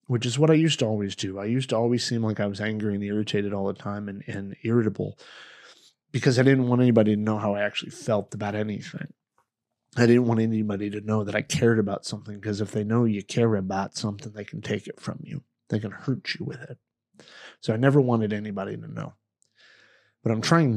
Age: 30-49